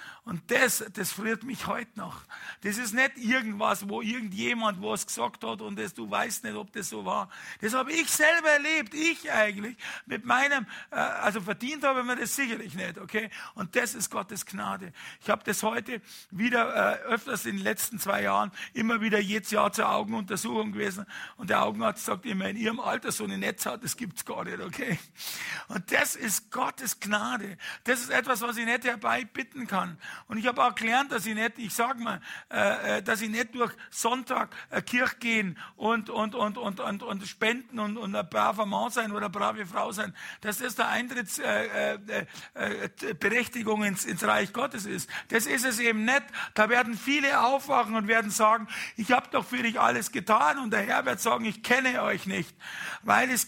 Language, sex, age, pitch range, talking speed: German, male, 60-79, 210-245 Hz, 200 wpm